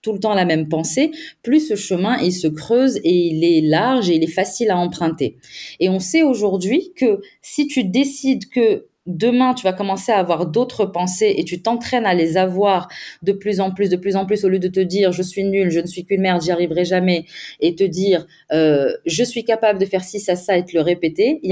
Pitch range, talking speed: 170-240 Hz, 240 wpm